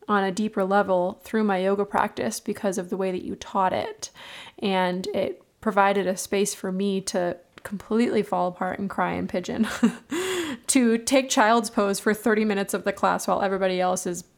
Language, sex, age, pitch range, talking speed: English, female, 20-39, 190-220 Hz, 190 wpm